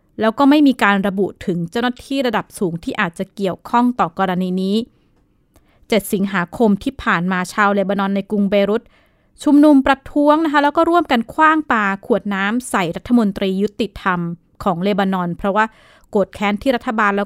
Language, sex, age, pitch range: Thai, female, 20-39, 190-240 Hz